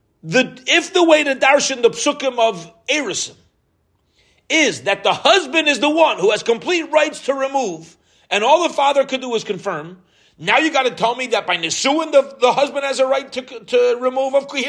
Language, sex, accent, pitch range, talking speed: English, male, American, 165-275 Hz, 210 wpm